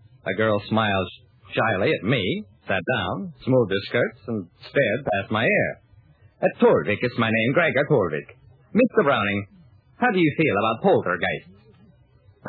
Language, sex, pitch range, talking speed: English, male, 115-175 Hz, 150 wpm